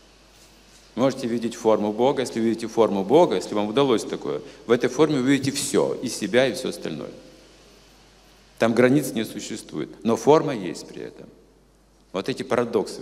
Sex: male